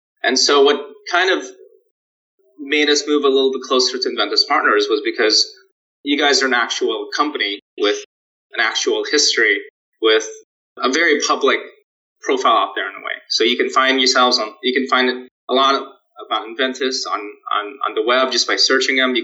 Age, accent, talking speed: 20-39, American, 185 wpm